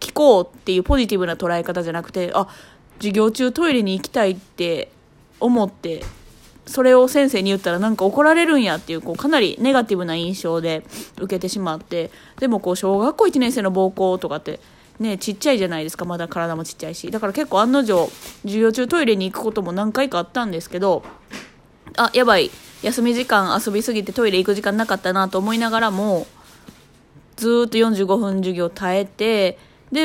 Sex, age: female, 20-39